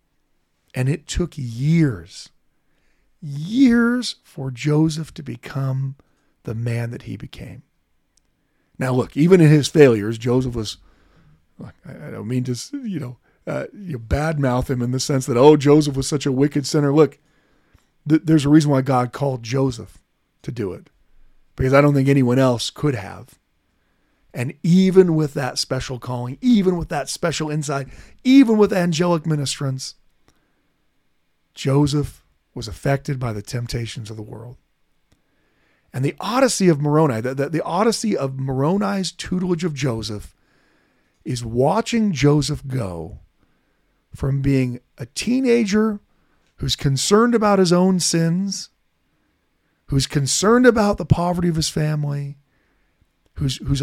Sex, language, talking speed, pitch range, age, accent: male, English, 140 wpm, 130-170 Hz, 40-59, American